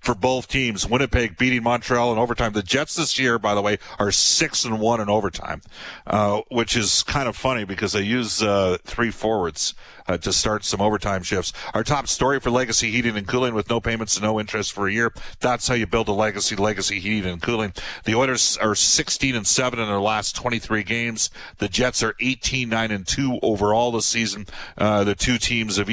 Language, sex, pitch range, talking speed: English, male, 105-125 Hz, 210 wpm